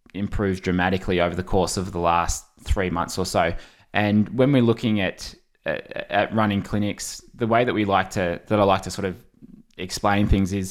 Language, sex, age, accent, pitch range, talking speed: English, male, 20-39, Australian, 95-110 Hz, 195 wpm